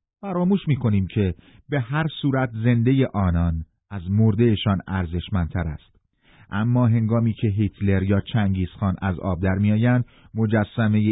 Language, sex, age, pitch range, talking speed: Persian, male, 40-59, 90-115 Hz, 125 wpm